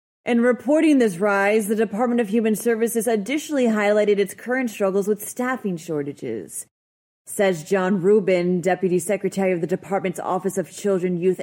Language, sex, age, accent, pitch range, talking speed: English, female, 30-49, American, 180-240 Hz, 150 wpm